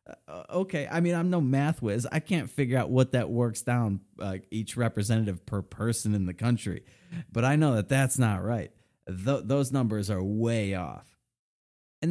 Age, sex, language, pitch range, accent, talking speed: 30-49, male, English, 105-140 Hz, American, 180 wpm